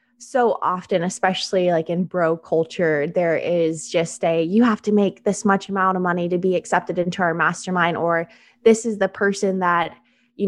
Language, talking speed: English, 190 wpm